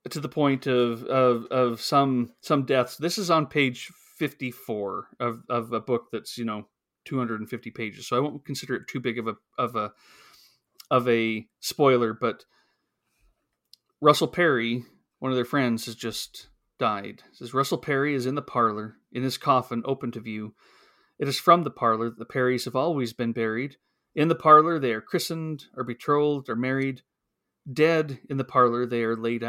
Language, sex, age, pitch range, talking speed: English, male, 30-49, 115-135 Hz, 185 wpm